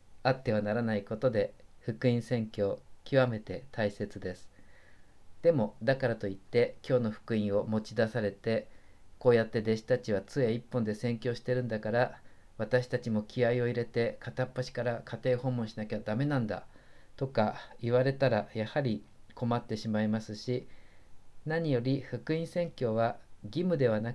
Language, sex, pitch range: Japanese, male, 105-130 Hz